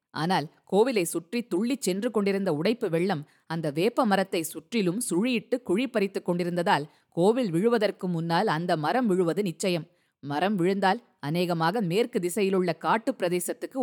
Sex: female